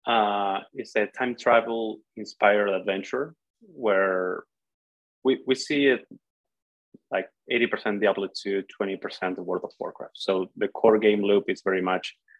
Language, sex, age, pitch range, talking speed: English, male, 20-39, 95-110 Hz, 135 wpm